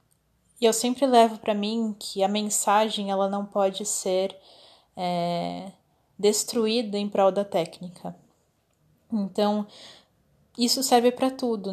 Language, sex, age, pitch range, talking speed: Portuguese, female, 10-29, 195-225 Hz, 120 wpm